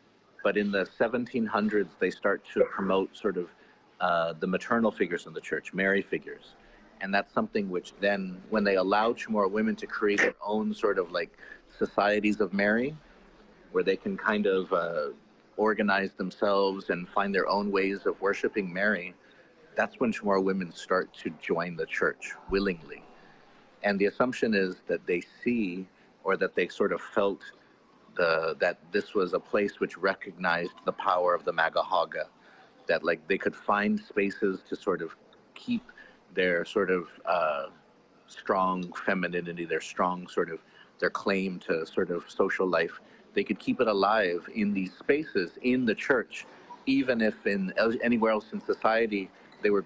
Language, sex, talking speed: English, male, 165 wpm